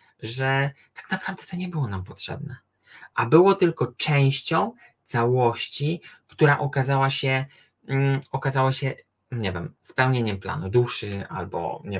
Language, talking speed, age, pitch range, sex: Polish, 130 wpm, 20-39, 115-155 Hz, male